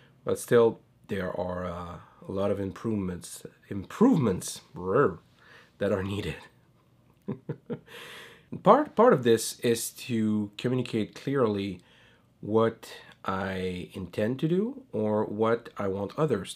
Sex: male